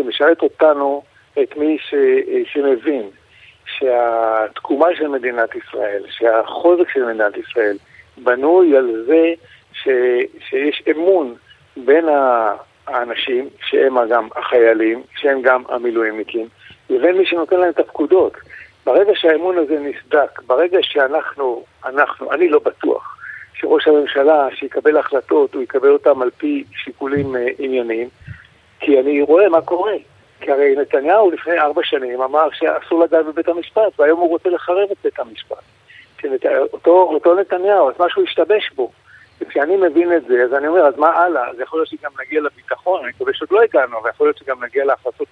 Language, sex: Hebrew, male